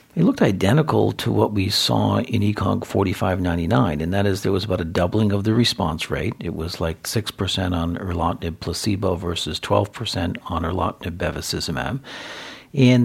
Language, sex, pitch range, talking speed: English, male, 90-115 Hz, 160 wpm